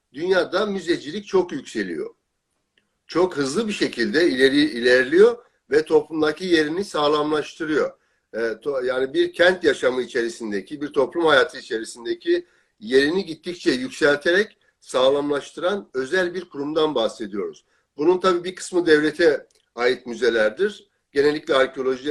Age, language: 60-79, Turkish